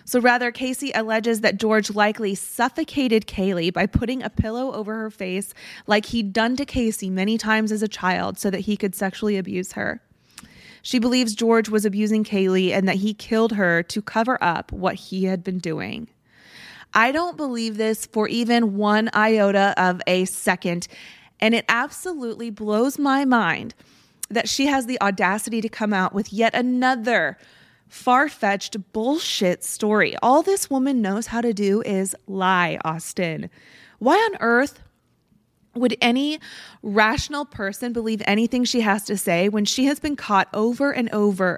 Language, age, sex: English, 20-39, female